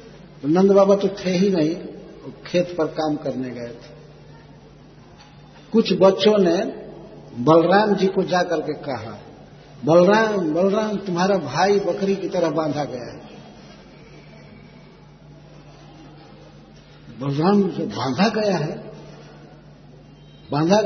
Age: 60-79